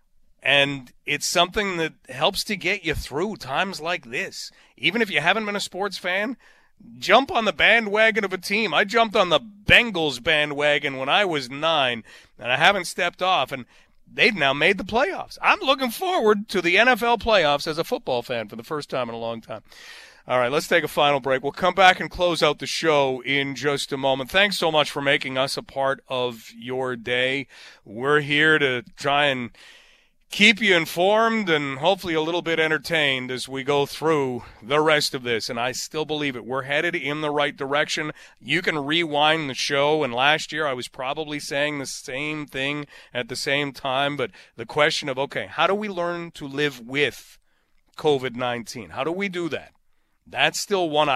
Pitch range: 135-175 Hz